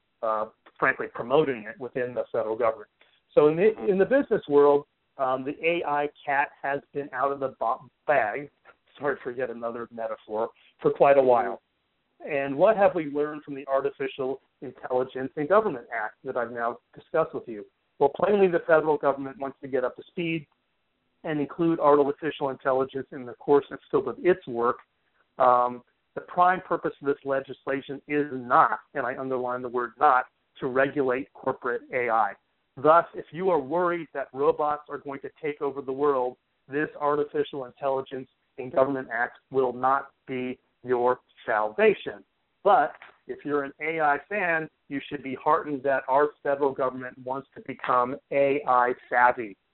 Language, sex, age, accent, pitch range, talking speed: English, male, 40-59, American, 130-150 Hz, 165 wpm